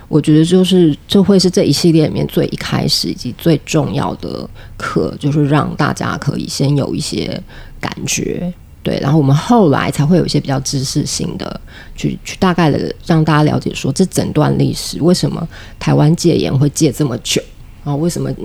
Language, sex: Chinese, female